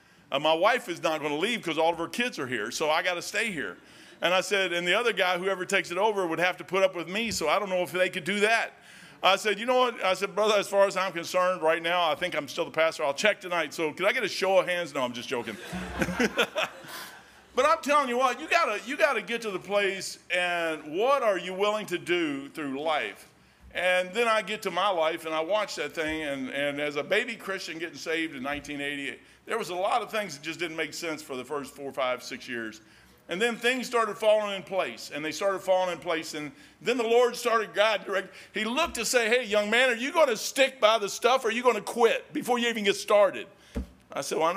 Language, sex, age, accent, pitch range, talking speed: English, male, 50-69, American, 170-230 Hz, 265 wpm